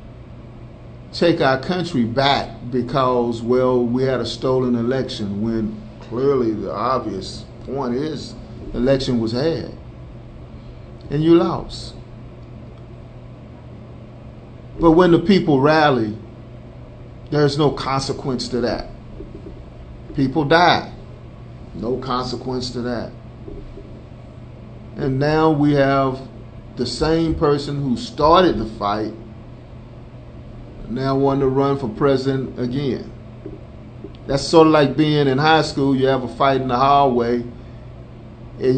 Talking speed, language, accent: 115 wpm, English, American